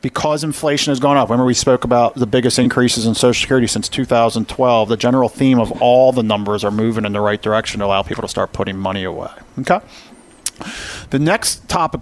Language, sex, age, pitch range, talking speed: English, male, 40-59, 115-150 Hz, 210 wpm